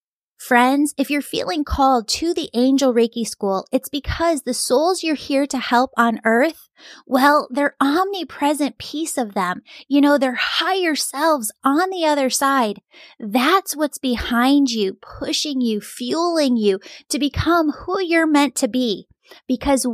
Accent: American